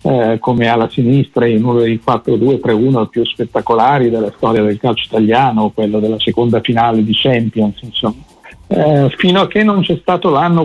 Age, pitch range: 50-69, 115-145 Hz